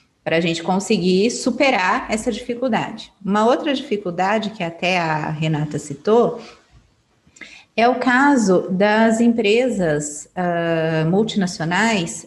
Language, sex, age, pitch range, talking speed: Portuguese, female, 30-49, 180-260 Hz, 105 wpm